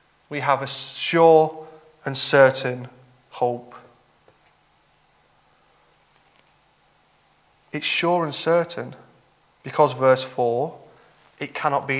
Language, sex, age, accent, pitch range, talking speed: English, male, 30-49, British, 150-210 Hz, 85 wpm